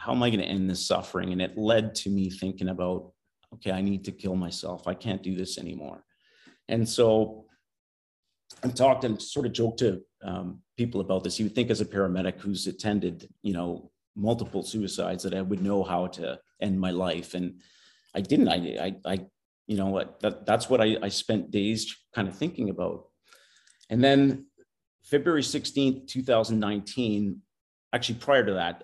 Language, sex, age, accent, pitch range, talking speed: English, male, 40-59, American, 95-110 Hz, 185 wpm